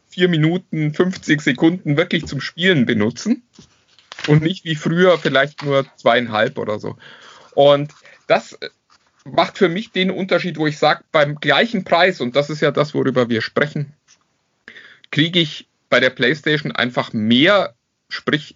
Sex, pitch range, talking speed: male, 125-165 Hz, 150 wpm